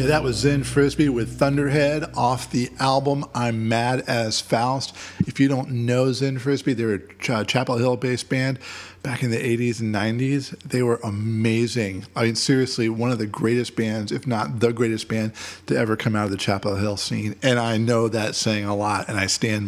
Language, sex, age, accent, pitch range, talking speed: English, male, 40-59, American, 105-125 Hz, 200 wpm